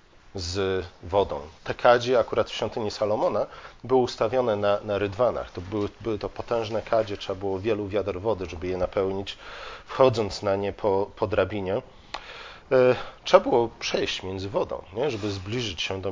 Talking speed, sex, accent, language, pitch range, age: 160 wpm, male, native, Polish, 95-115 Hz, 40-59